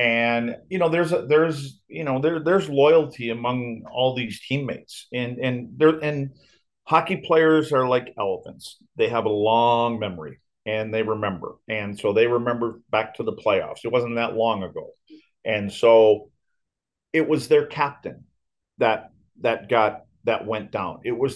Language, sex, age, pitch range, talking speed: English, male, 40-59, 105-135 Hz, 165 wpm